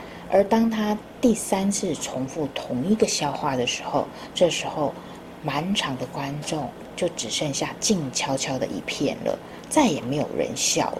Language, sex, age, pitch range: Chinese, female, 30-49, 150-210 Hz